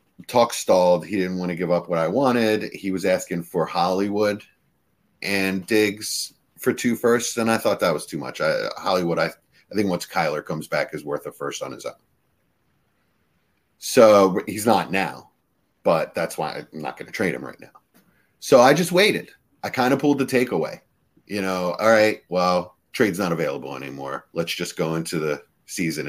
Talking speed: 190 wpm